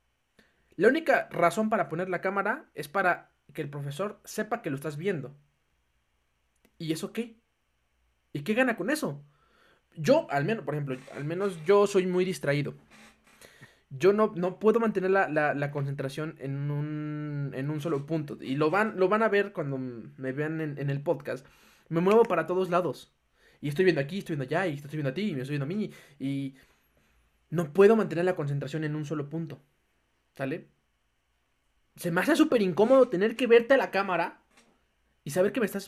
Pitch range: 145-195 Hz